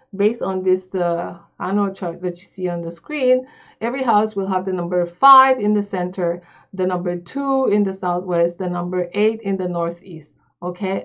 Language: English